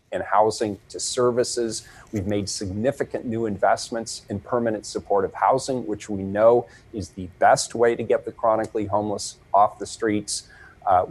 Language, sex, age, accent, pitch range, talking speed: English, male, 40-59, American, 105-120 Hz, 155 wpm